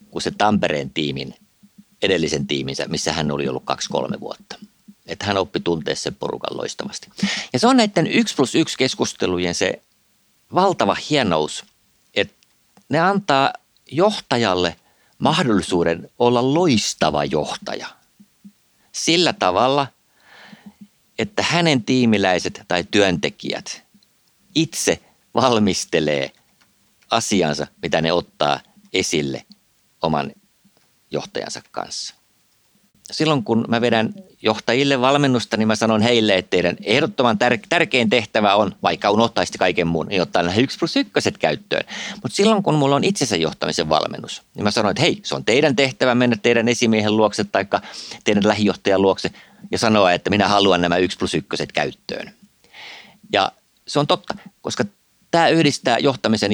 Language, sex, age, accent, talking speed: Finnish, male, 50-69, native, 130 wpm